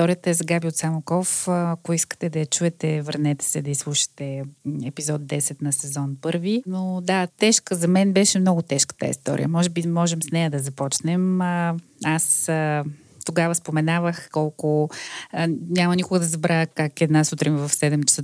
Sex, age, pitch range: female, 30-49, 150-180 Hz